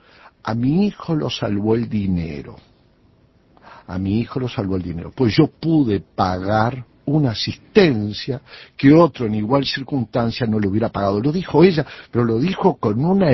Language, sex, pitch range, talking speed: Spanish, male, 115-180 Hz, 165 wpm